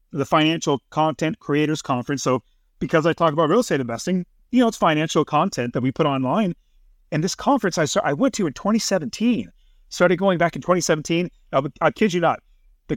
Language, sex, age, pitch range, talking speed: English, male, 30-49, 140-195 Hz, 200 wpm